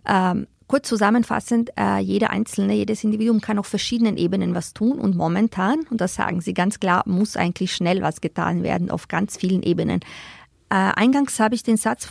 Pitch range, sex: 185-225 Hz, female